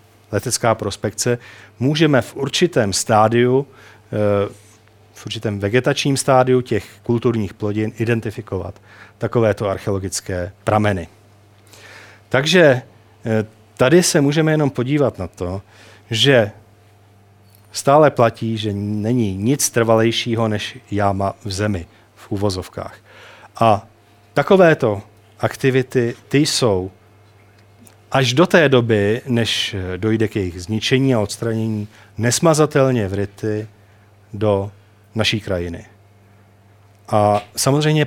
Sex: male